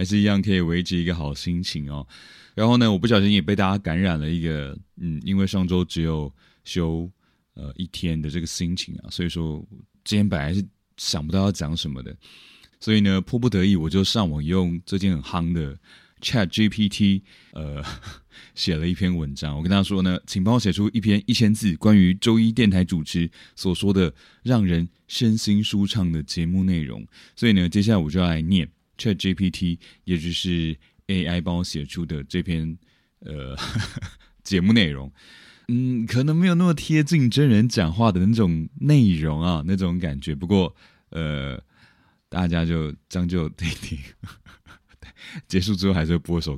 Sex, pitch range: male, 85-105 Hz